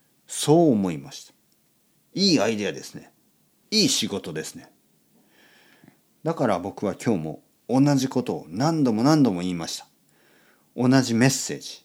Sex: male